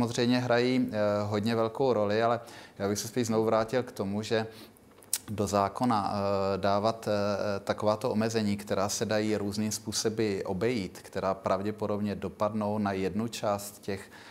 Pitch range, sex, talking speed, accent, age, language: 100-110 Hz, male, 140 wpm, native, 30-49, Czech